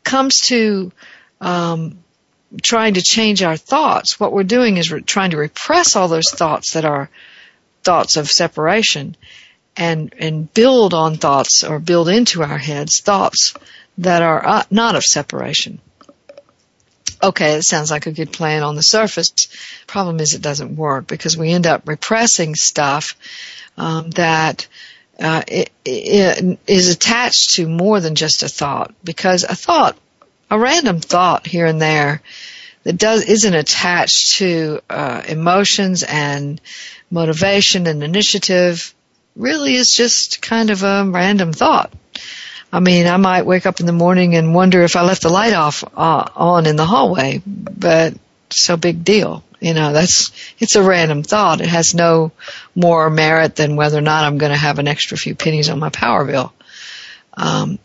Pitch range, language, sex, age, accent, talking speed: 160-200 Hz, English, female, 60-79, American, 165 wpm